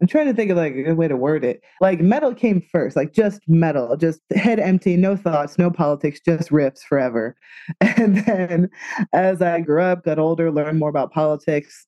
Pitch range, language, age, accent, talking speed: 150-185 Hz, English, 20-39, American, 205 wpm